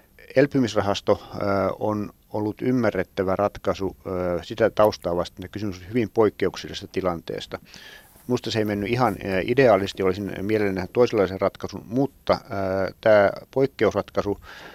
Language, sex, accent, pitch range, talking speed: Finnish, male, native, 95-110 Hz, 125 wpm